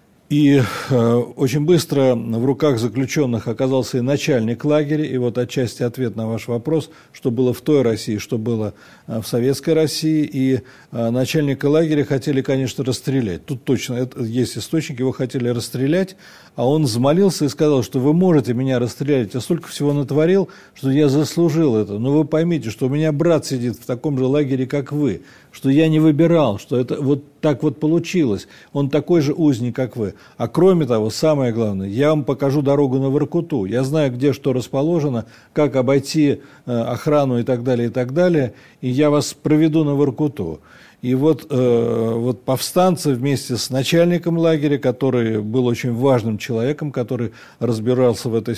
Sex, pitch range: male, 120-150 Hz